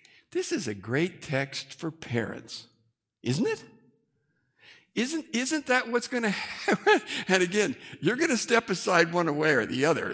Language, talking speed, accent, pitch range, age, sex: English, 165 wpm, American, 140-225 Hz, 60-79, male